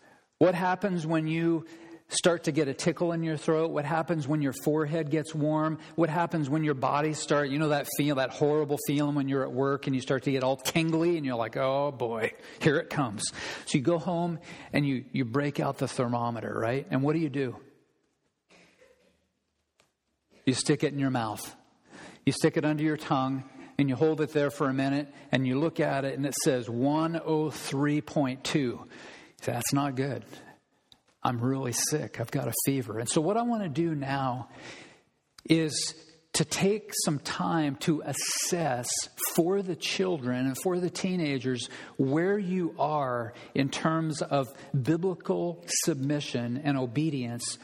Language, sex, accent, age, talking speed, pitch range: English, male, American, 50-69, 175 wpm, 135-165 Hz